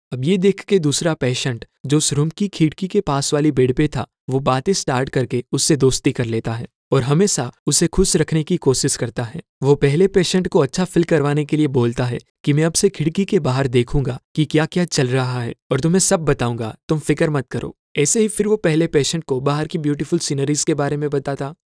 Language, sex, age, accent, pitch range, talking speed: Hindi, male, 20-39, native, 135-175 Hz, 225 wpm